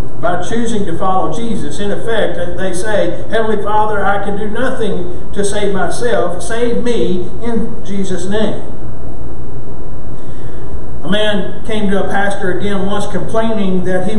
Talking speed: 145 wpm